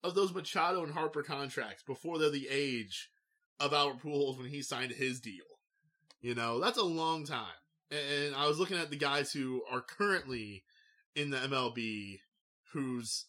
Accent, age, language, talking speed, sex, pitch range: American, 20-39, English, 170 wpm, male, 125-160 Hz